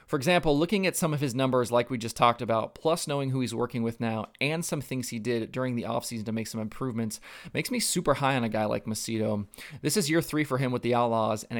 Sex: male